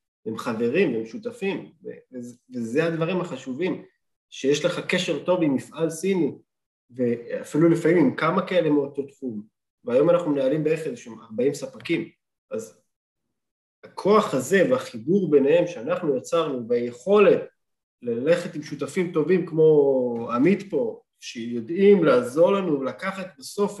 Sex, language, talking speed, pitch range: male, Hebrew, 130 wpm, 145-180 Hz